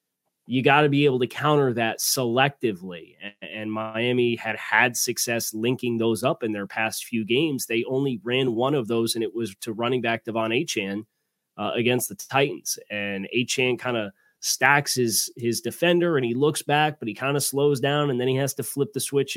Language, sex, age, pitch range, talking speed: English, male, 20-39, 115-135 Hz, 210 wpm